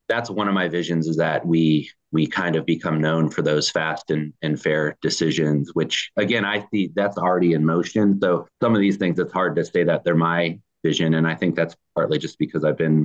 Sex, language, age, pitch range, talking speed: male, English, 30-49, 80-85 Hz, 230 wpm